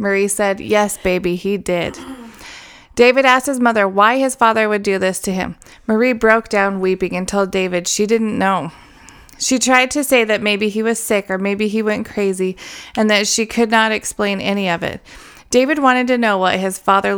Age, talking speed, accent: 30-49, 205 wpm, American